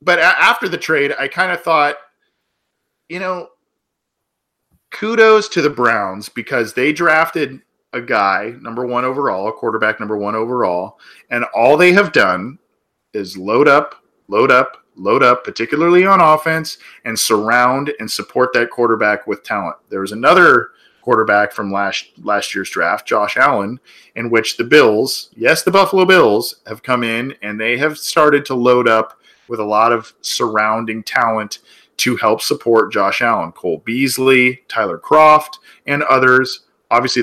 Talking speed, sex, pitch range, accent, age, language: 155 wpm, male, 110-170 Hz, American, 40-59, English